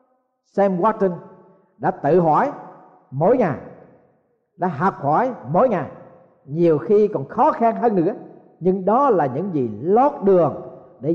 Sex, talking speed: male, 145 wpm